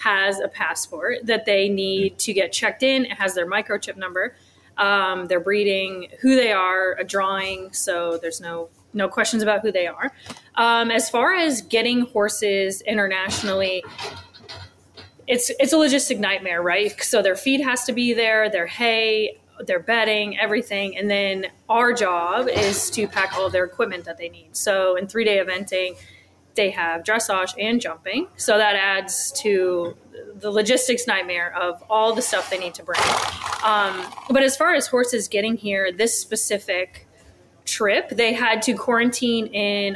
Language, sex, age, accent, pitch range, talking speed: English, female, 20-39, American, 190-225 Hz, 165 wpm